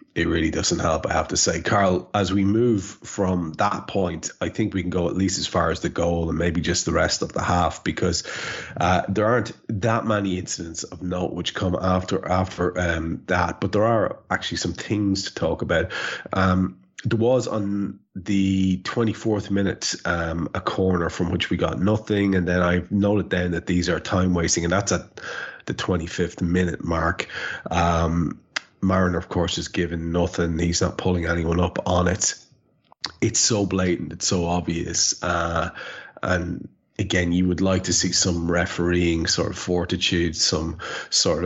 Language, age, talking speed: English, 30-49, 180 wpm